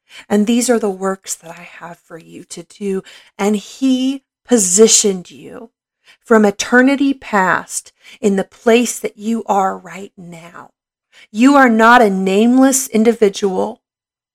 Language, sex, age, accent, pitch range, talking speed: English, female, 40-59, American, 195-250 Hz, 140 wpm